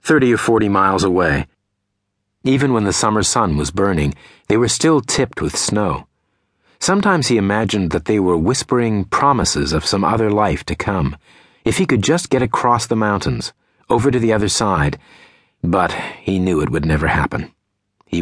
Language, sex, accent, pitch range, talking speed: English, male, American, 85-110 Hz, 175 wpm